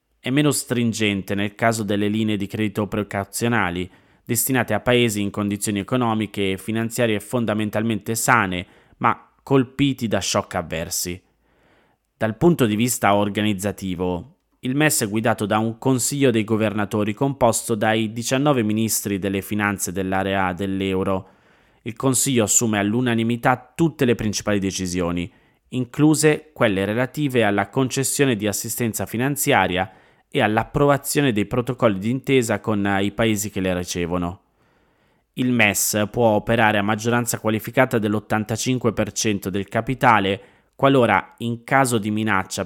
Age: 20-39